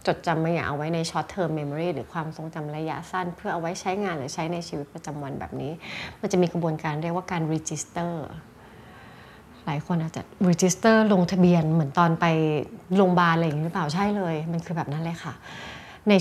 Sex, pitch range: female, 160-195 Hz